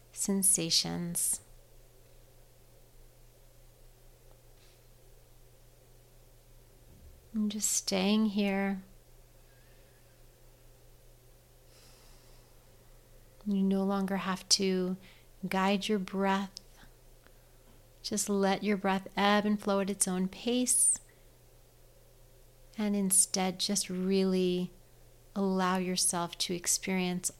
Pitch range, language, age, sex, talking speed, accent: 130-195 Hz, English, 40-59, female, 70 wpm, American